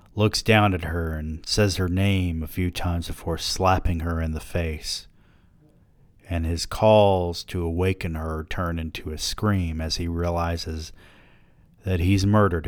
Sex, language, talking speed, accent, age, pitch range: male, English, 155 wpm, American, 40-59, 85-115 Hz